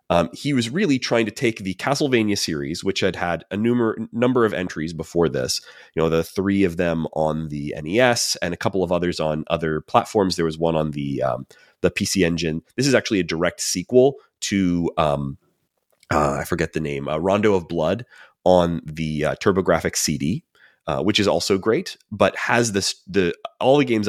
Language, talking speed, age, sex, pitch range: English, 200 wpm, 30-49, male, 80-100 Hz